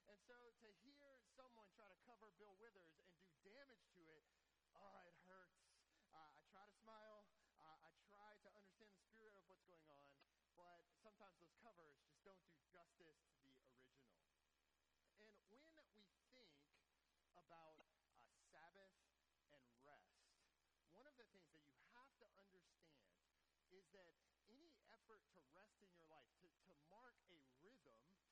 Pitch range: 160-220 Hz